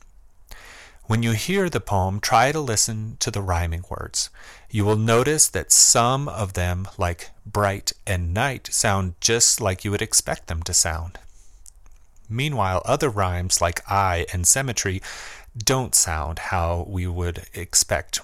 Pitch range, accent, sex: 90-110 Hz, American, male